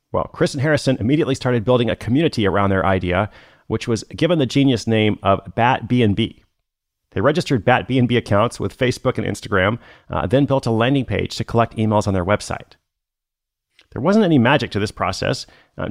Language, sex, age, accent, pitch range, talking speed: English, male, 30-49, American, 100-130 Hz, 190 wpm